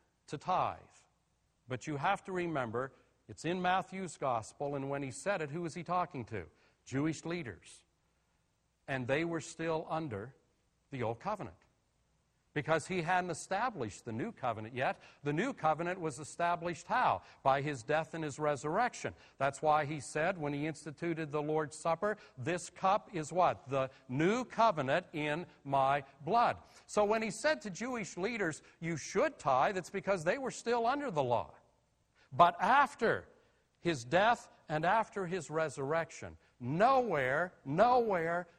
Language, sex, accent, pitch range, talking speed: English, male, American, 135-190 Hz, 155 wpm